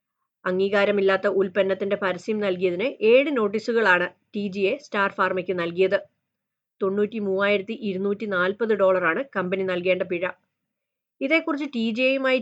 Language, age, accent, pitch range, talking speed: Malayalam, 30-49, native, 190-240 Hz, 110 wpm